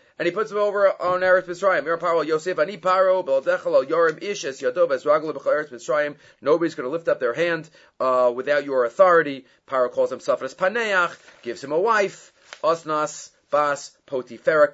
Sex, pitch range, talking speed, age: male, 150-235 Hz, 125 wpm, 30-49